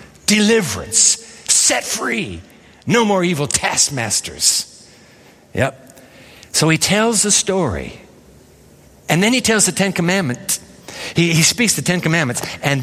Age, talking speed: 50-69, 125 wpm